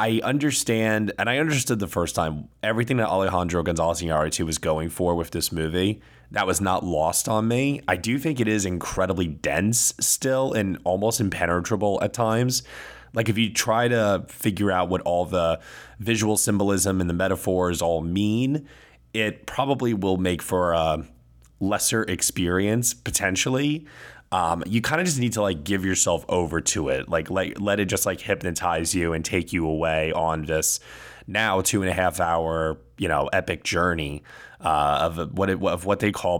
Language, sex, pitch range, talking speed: English, male, 80-105 Hz, 180 wpm